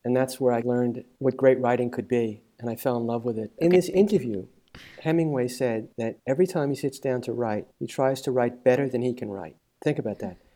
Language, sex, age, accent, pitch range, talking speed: English, male, 50-69, American, 120-155 Hz, 240 wpm